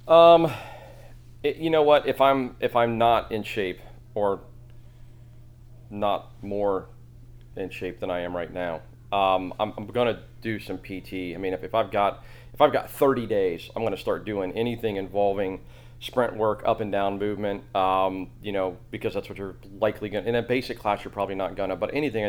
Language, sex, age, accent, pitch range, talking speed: English, male, 30-49, American, 95-120 Hz, 190 wpm